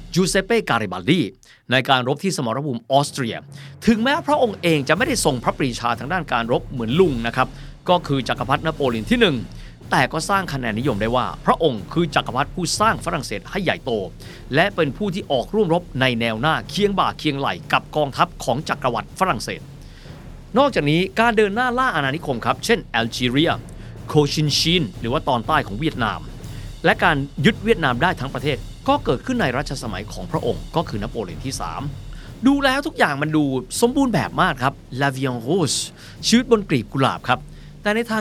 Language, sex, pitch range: Thai, male, 125-190 Hz